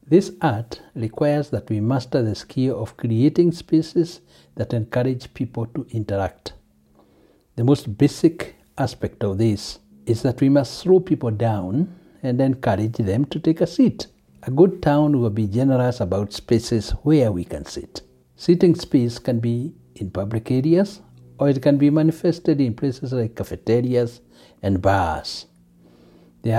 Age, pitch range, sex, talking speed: 60-79, 110-145 Hz, male, 150 wpm